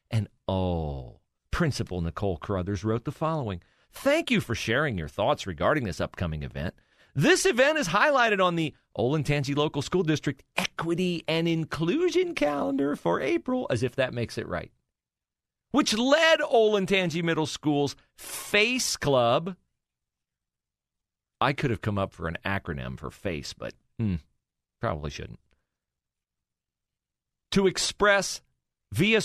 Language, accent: English, American